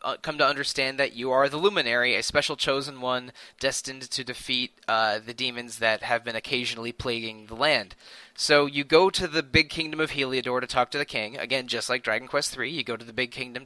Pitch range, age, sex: 125-150 Hz, 20-39, male